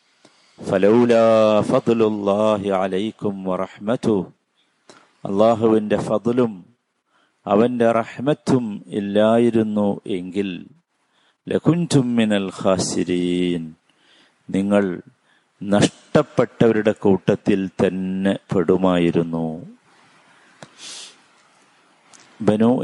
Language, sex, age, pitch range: Malayalam, male, 50-69, 95-115 Hz